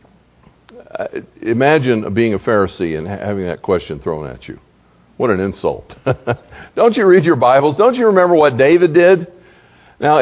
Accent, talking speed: American, 155 wpm